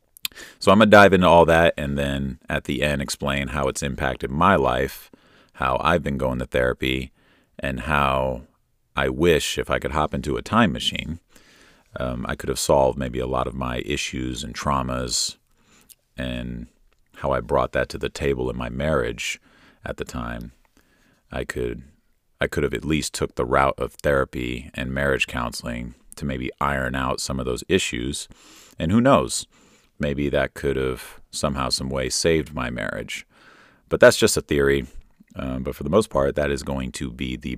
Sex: male